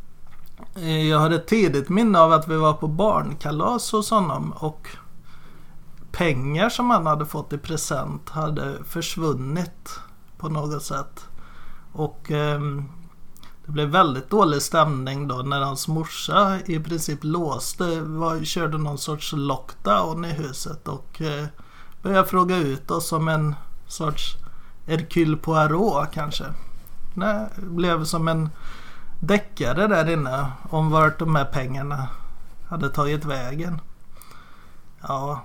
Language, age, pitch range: Swedish, 30-49, 150-175 Hz